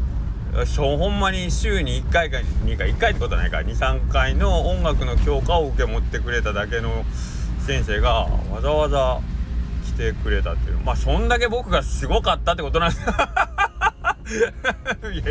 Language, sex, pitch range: Japanese, male, 75-100 Hz